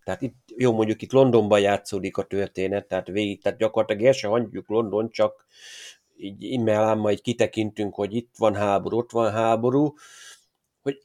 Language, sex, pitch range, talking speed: Hungarian, male, 110-125 Hz, 155 wpm